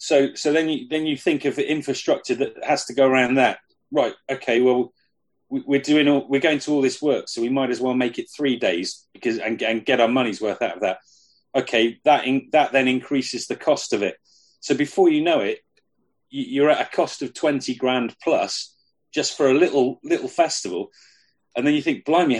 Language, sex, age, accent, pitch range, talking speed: English, male, 30-49, British, 125-160 Hz, 220 wpm